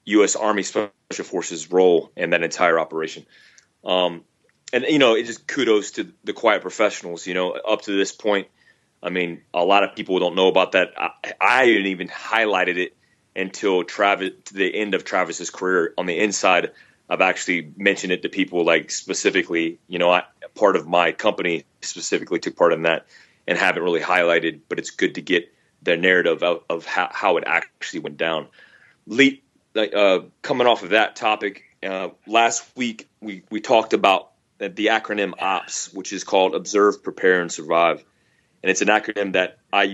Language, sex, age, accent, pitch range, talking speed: English, male, 30-49, American, 90-105 Hz, 185 wpm